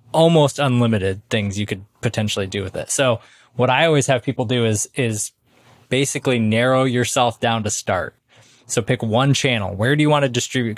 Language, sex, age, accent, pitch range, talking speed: English, male, 20-39, American, 110-130 Hz, 185 wpm